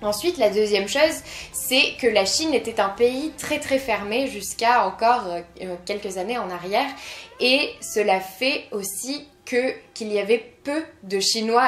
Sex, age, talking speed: female, 20-39, 160 wpm